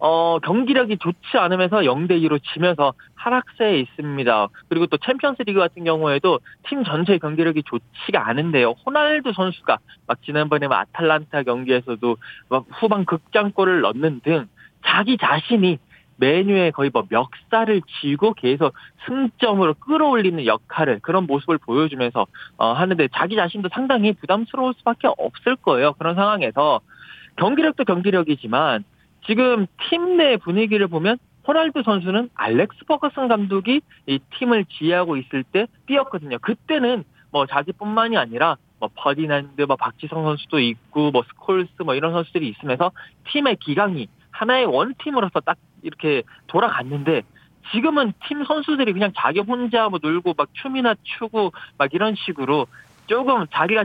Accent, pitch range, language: native, 150-235 Hz, Korean